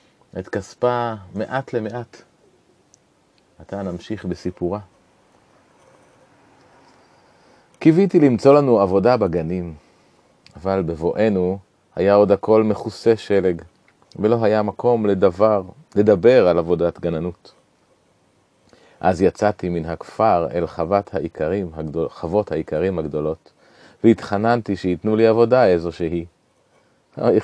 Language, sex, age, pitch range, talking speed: Hebrew, male, 30-49, 90-115 Hz, 90 wpm